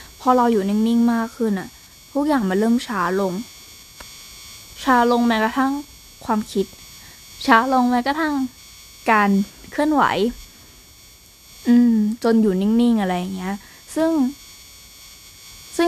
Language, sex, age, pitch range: Thai, female, 10-29, 205-255 Hz